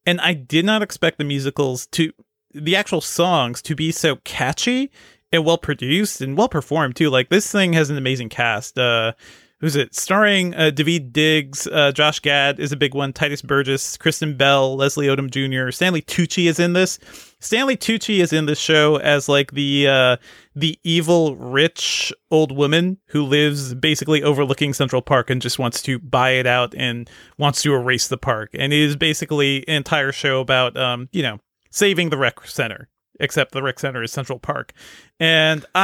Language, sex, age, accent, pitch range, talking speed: English, male, 30-49, American, 135-160 Hz, 190 wpm